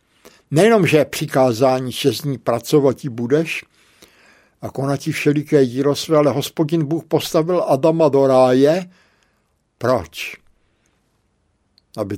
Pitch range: 130-170 Hz